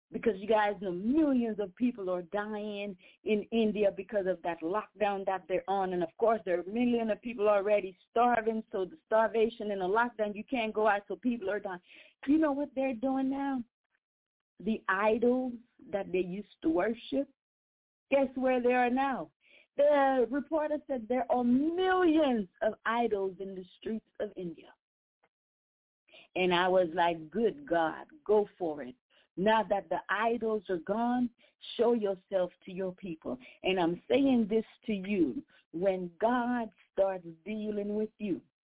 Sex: female